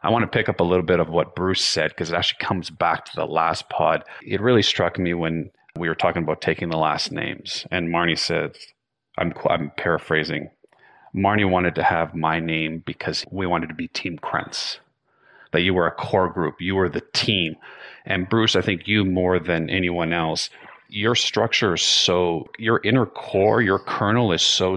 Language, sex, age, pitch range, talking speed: English, male, 40-59, 80-100 Hz, 200 wpm